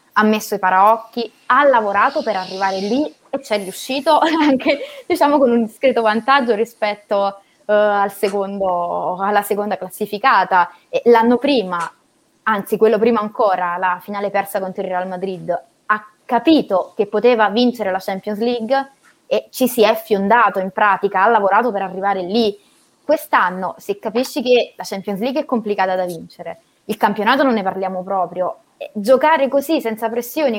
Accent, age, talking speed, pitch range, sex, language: native, 20-39, 160 wpm, 205-255 Hz, female, Italian